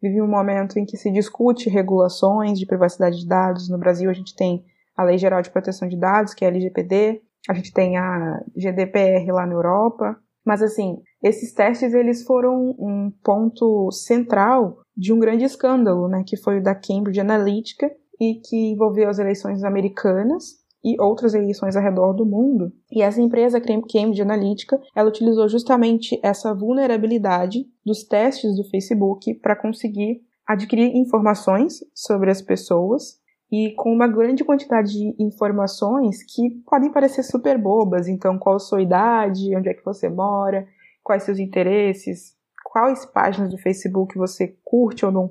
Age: 20-39